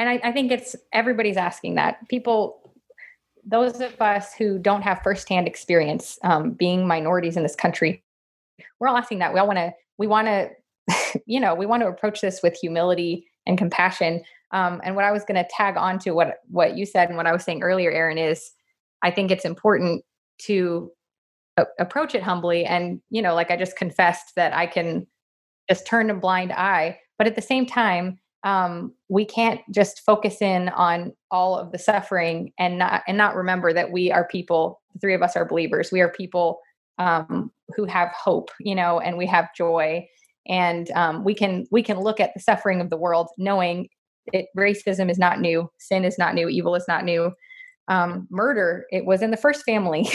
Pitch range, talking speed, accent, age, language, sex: 175-210 Hz, 205 wpm, American, 20-39, English, female